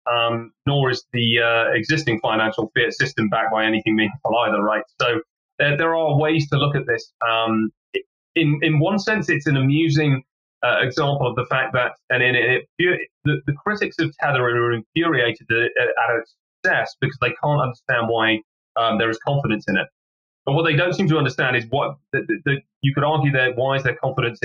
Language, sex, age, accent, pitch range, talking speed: English, male, 30-49, British, 115-150 Hz, 205 wpm